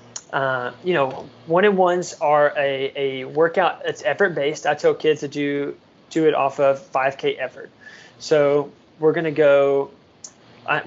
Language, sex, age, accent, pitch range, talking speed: English, male, 20-39, American, 140-165 Hz, 145 wpm